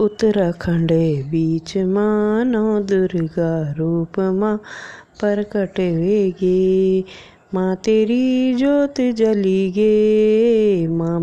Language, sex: Hindi, female